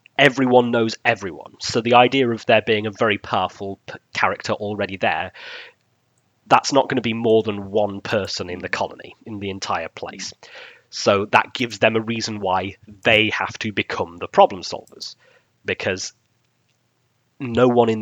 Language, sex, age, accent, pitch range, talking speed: English, male, 30-49, British, 100-115 Hz, 165 wpm